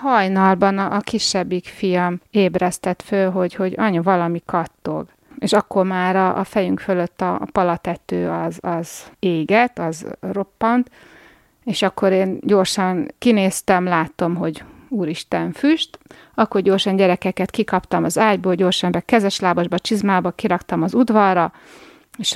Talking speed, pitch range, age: 125 wpm, 180-215 Hz, 30-49